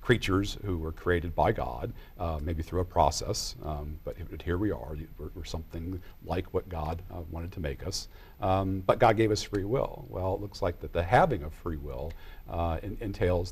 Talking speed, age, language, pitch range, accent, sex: 210 wpm, 50-69, English, 80-105 Hz, American, male